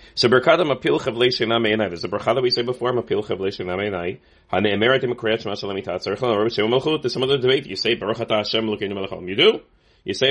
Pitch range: 95-125 Hz